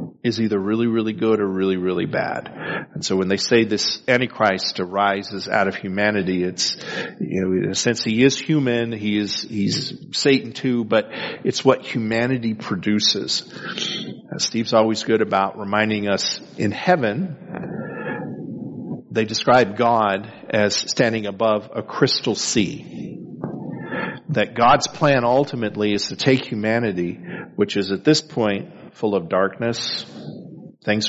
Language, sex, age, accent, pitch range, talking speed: English, male, 40-59, American, 100-120 Hz, 145 wpm